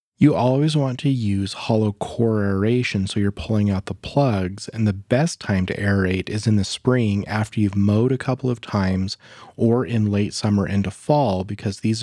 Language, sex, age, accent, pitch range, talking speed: English, male, 30-49, American, 100-115 Hz, 195 wpm